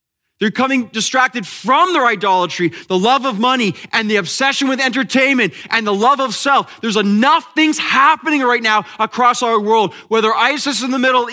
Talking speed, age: 180 wpm, 30-49